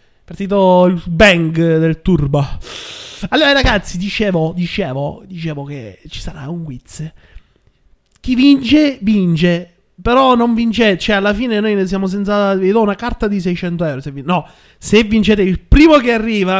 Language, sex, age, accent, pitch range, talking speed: Italian, male, 30-49, native, 160-215 Hz, 160 wpm